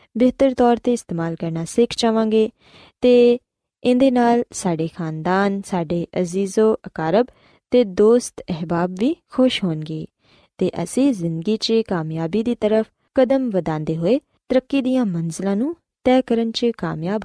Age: 20-39